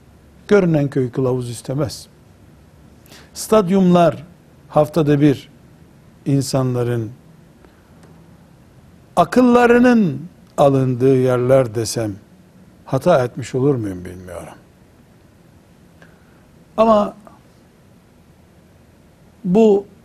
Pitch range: 115-165 Hz